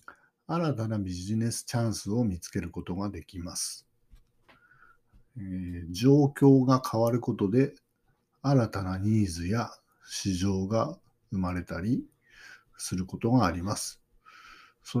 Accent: native